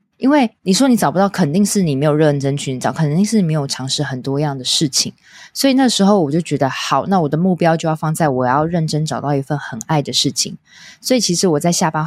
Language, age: Chinese, 20-39